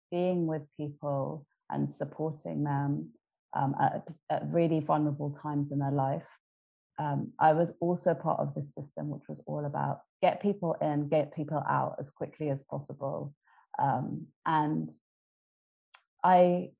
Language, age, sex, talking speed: English, 30-49, female, 145 wpm